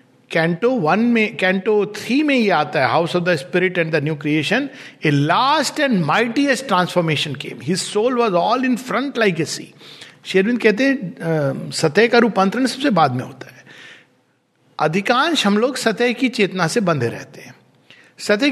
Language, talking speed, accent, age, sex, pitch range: Hindi, 135 wpm, native, 60-79, male, 165-235 Hz